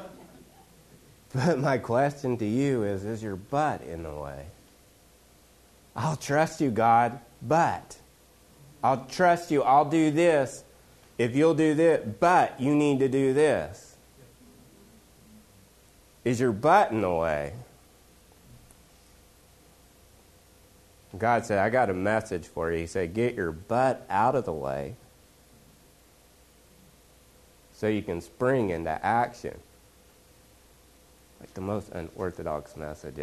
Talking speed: 120 wpm